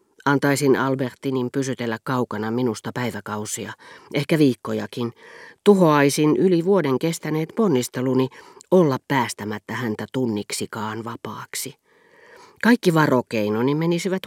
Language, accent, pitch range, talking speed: Finnish, native, 120-160 Hz, 90 wpm